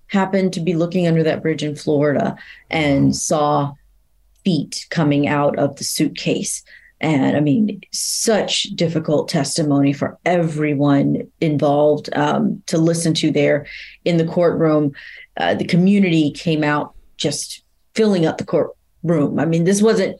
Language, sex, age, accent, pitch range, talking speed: English, female, 30-49, American, 155-195 Hz, 145 wpm